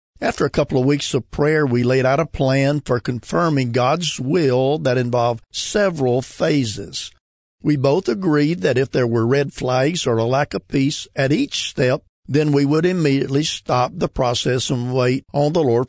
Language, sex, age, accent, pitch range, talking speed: English, male, 50-69, American, 120-150 Hz, 185 wpm